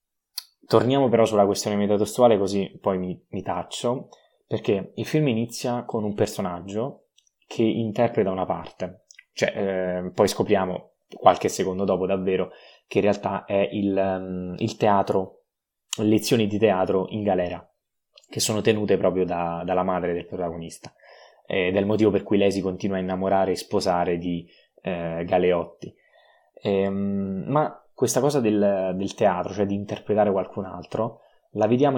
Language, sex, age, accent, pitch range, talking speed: Italian, male, 20-39, native, 95-110 Hz, 150 wpm